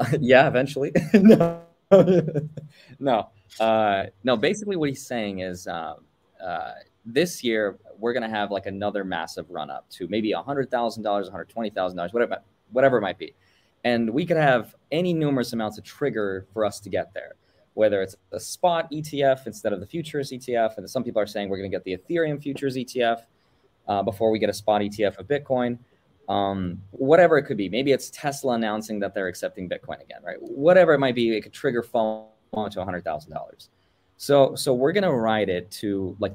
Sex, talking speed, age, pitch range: male, 190 wpm, 20-39, 100-135 Hz